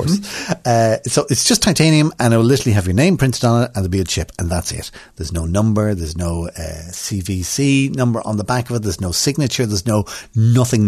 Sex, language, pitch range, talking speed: male, English, 105-135 Hz, 230 wpm